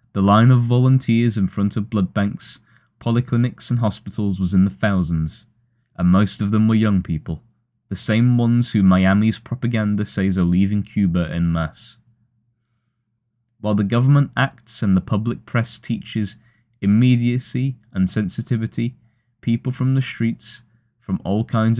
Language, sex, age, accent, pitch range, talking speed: English, male, 20-39, British, 95-115 Hz, 150 wpm